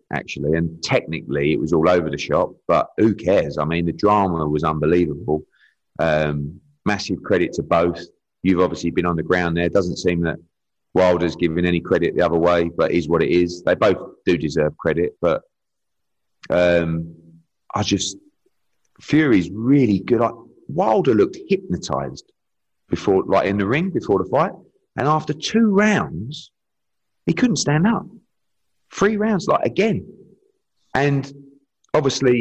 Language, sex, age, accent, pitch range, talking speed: English, male, 30-49, British, 85-140 Hz, 150 wpm